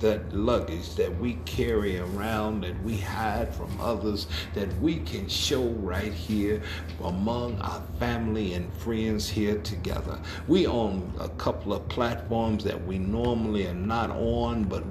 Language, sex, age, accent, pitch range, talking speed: English, male, 50-69, American, 85-115 Hz, 150 wpm